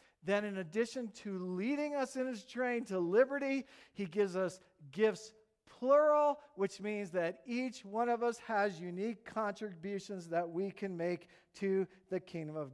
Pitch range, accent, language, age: 175-230 Hz, American, English, 50-69